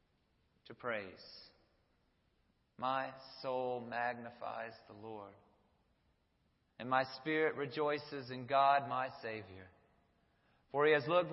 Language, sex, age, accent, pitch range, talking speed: English, male, 40-59, American, 120-150 Hz, 100 wpm